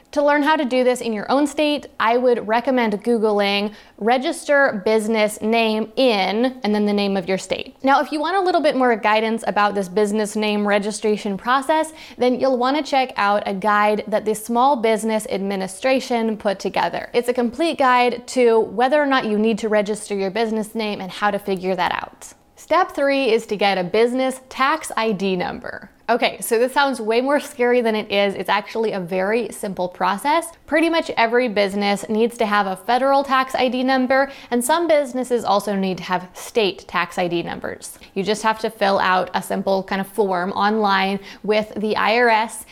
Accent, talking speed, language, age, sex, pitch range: American, 195 wpm, English, 20-39, female, 205-255 Hz